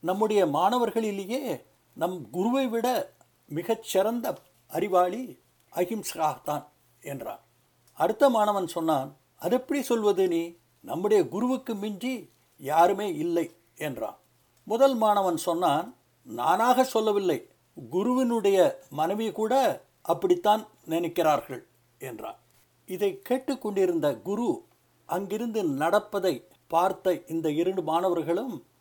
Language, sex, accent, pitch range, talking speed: Tamil, male, native, 170-250 Hz, 85 wpm